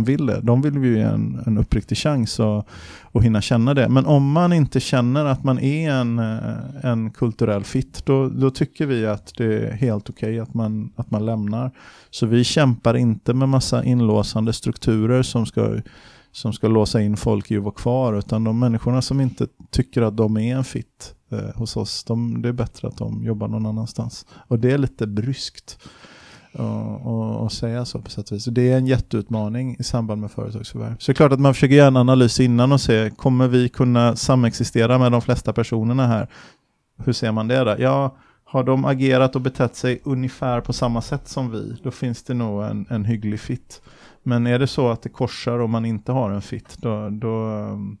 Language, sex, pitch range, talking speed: Swedish, male, 110-130 Hz, 205 wpm